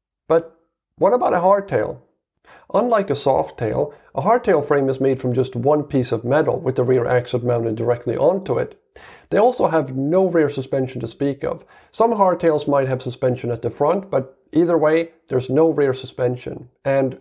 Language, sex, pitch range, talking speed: English, male, 130-170 Hz, 180 wpm